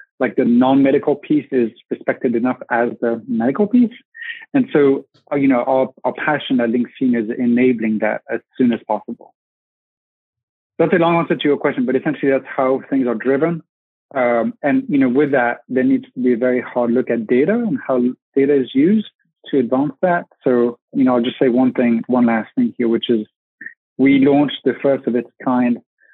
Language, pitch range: English, 120-140 Hz